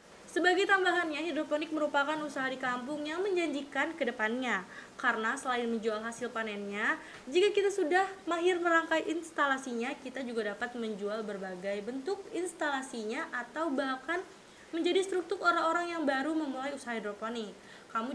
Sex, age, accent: female, 20-39, native